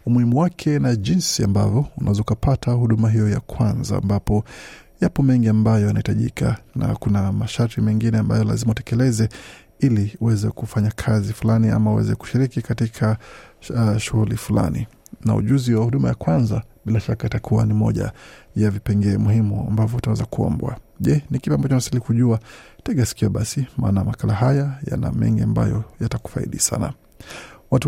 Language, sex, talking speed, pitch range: Swahili, male, 140 wpm, 110-130 Hz